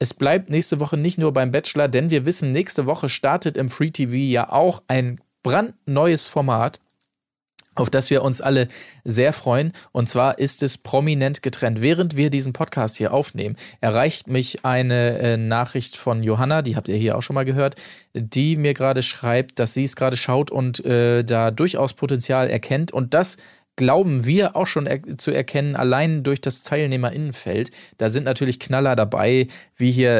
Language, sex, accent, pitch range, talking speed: German, male, German, 120-140 Hz, 175 wpm